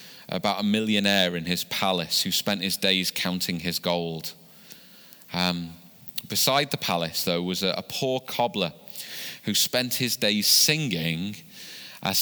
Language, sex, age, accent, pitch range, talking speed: English, male, 30-49, British, 90-120 Hz, 140 wpm